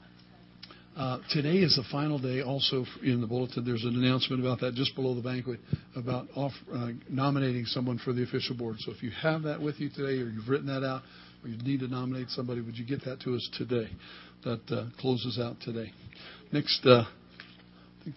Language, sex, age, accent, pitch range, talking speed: English, male, 60-79, American, 120-140 Hz, 205 wpm